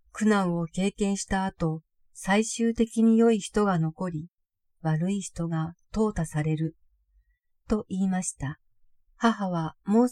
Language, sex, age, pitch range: Japanese, female, 40-59, 170-220 Hz